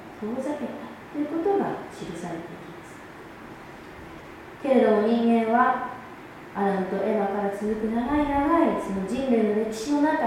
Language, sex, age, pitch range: Japanese, female, 30-49, 200-260 Hz